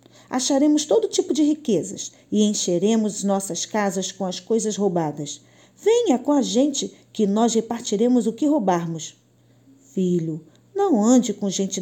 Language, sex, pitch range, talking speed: Portuguese, female, 175-255 Hz, 140 wpm